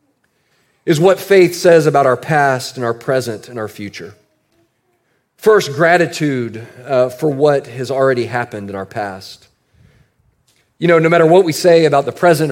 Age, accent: 40-59, American